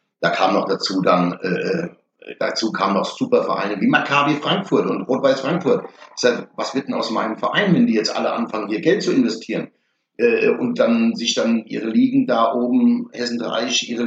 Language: German